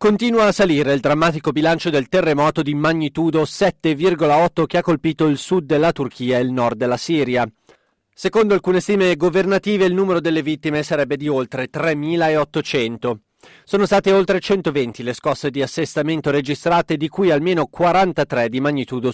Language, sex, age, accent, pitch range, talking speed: Italian, male, 30-49, native, 140-175 Hz, 155 wpm